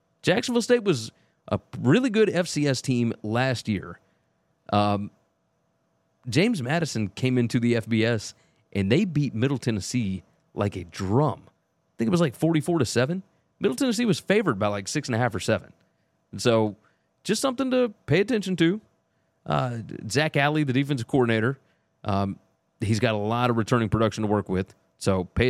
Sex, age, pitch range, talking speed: male, 30-49, 105-145 Hz, 160 wpm